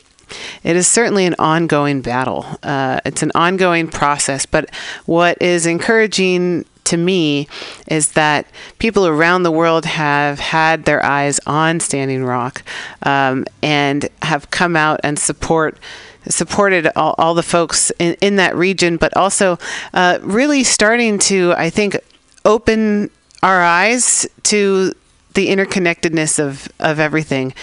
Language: English